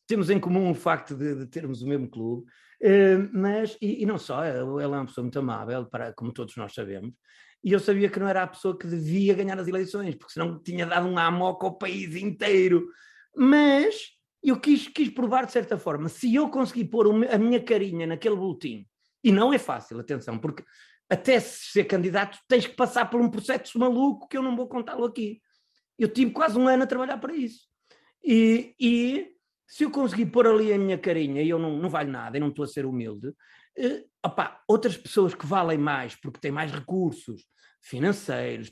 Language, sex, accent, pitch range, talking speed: Portuguese, male, Portuguese, 160-240 Hz, 205 wpm